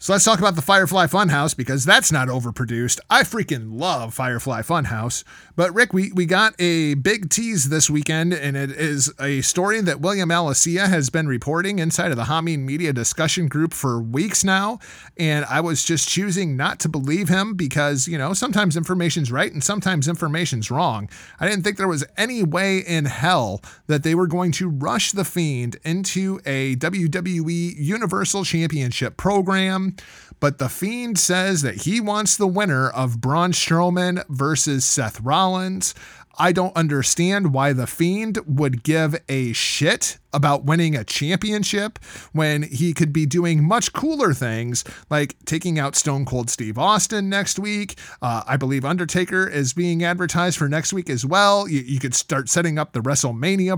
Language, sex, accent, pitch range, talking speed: English, male, American, 140-185 Hz, 175 wpm